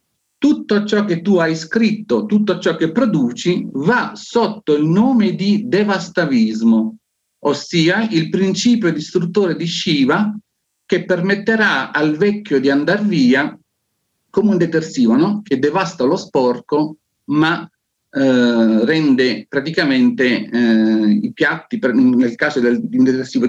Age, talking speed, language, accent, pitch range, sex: 50-69, 125 wpm, Italian, native, 150-210 Hz, male